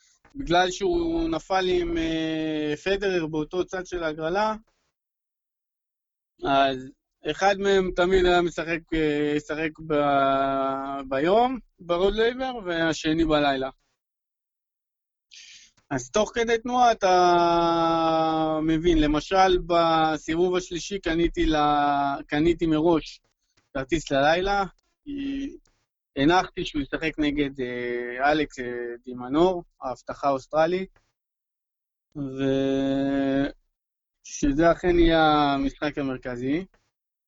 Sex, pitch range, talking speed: male, 145-185 Hz, 80 wpm